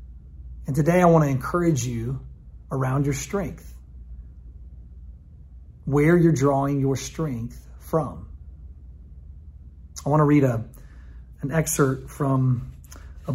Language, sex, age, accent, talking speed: English, male, 40-59, American, 100 wpm